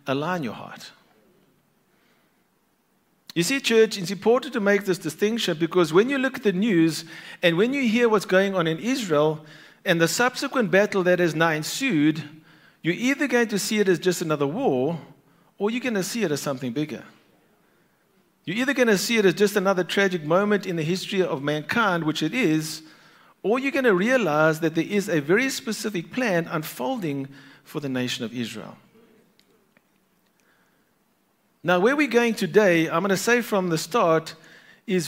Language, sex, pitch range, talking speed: English, male, 160-220 Hz, 180 wpm